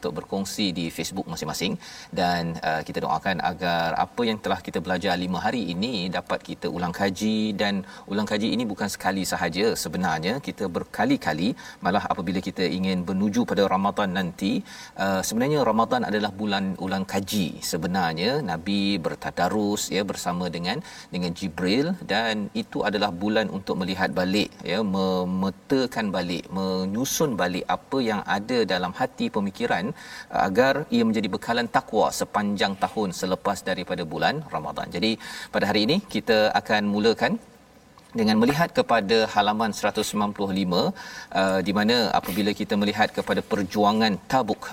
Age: 40-59